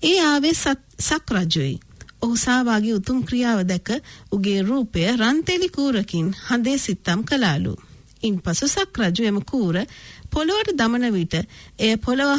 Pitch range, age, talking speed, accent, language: 190-275 Hz, 50-69, 115 wpm, Indian, English